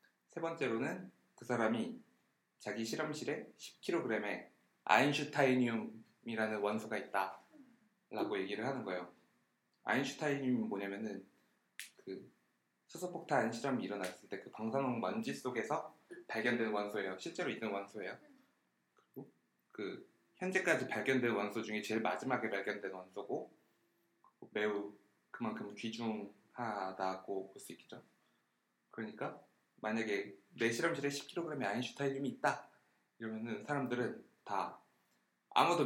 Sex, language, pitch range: male, Korean, 105-155 Hz